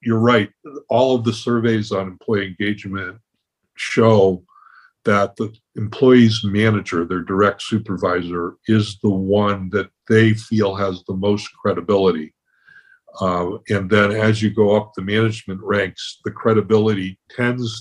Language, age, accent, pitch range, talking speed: English, 50-69, American, 95-115 Hz, 135 wpm